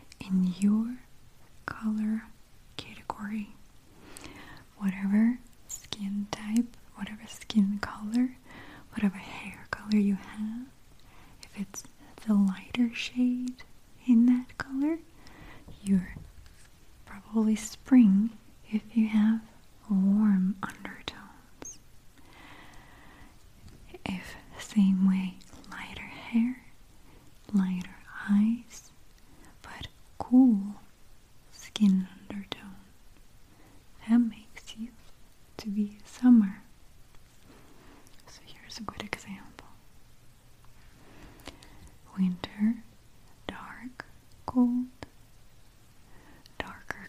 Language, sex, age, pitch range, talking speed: English, female, 30-49, 195-235 Hz, 70 wpm